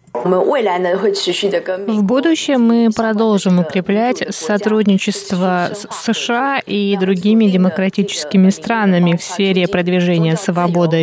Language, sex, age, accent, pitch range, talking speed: Russian, female, 20-39, native, 180-230 Hz, 85 wpm